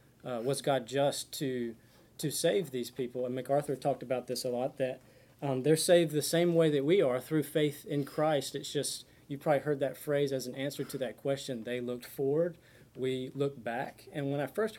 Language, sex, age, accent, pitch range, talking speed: English, male, 30-49, American, 130-160 Hz, 215 wpm